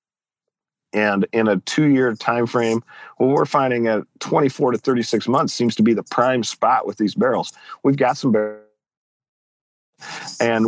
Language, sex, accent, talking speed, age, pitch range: English, male, American, 155 wpm, 40-59, 105-135 Hz